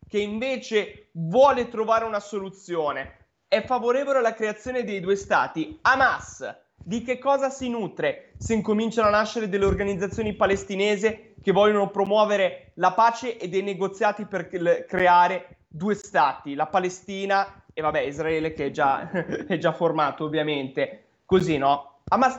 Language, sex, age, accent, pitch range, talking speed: Italian, male, 20-39, native, 170-225 Hz, 140 wpm